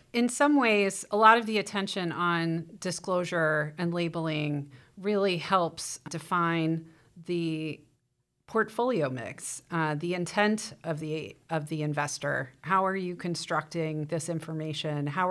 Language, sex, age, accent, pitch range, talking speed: English, female, 30-49, American, 155-180 Hz, 125 wpm